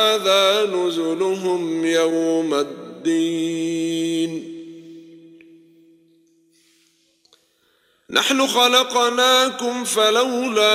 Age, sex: 50-69, male